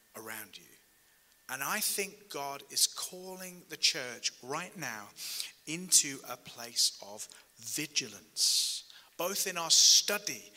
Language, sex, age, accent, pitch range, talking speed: English, male, 30-49, British, 155-215 Hz, 120 wpm